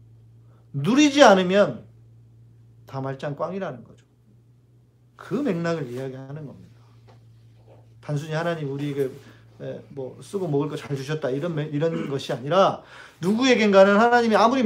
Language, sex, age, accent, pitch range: Korean, male, 40-59, native, 115-190 Hz